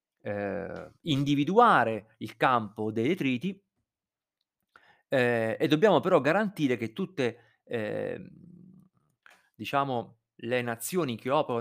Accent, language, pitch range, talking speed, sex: native, Italian, 115-175 Hz, 95 wpm, male